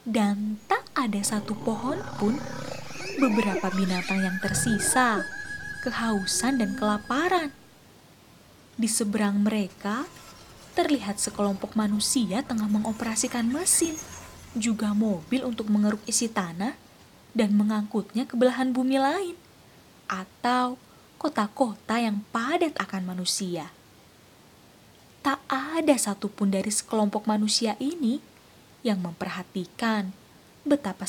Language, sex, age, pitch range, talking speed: Indonesian, female, 20-39, 205-255 Hz, 95 wpm